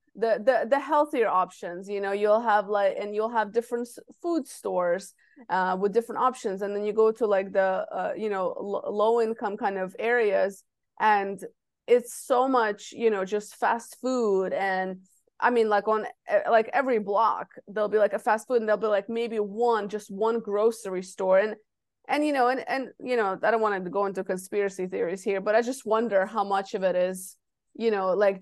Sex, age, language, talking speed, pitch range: female, 20-39, English, 205 wpm, 195-235 Hz